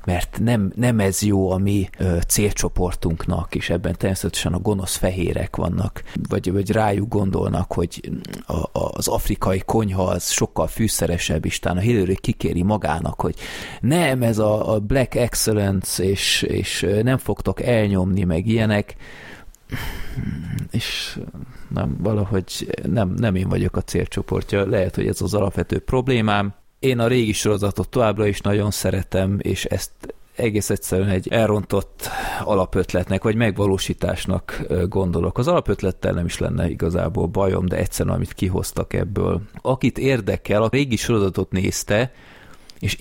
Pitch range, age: 90-110 Hz, 30-49